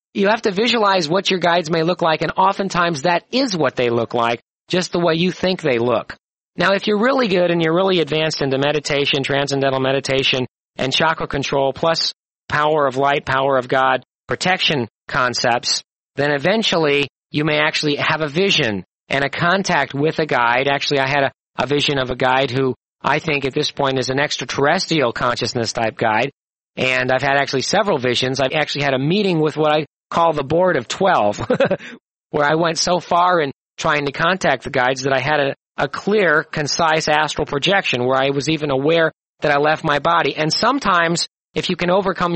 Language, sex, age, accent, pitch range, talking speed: English, male, 40-59, American, 135-165 Hz, 195 wpm